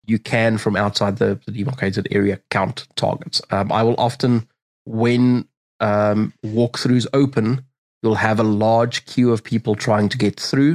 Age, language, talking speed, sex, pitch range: 20-39, English, 160 wpm, male, 105-120 Hz